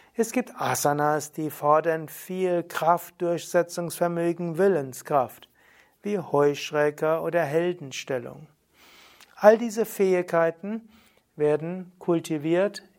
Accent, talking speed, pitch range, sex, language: German, 85 wpm, 145-180 Hz, male, German